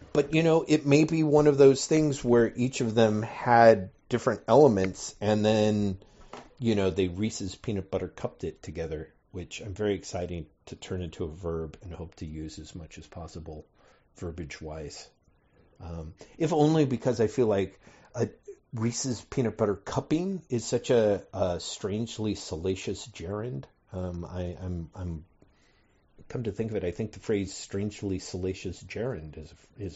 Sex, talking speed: male, 170 wpm